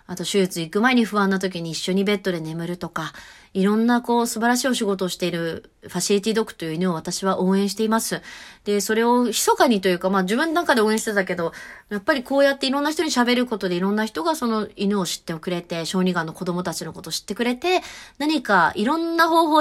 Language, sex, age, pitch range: Japanese, female, 30-49, 180-235 Hz